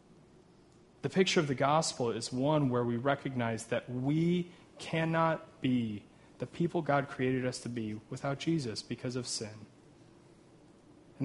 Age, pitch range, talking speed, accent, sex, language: 30-49, 125-160 Hz, 145 wpm, American, male, English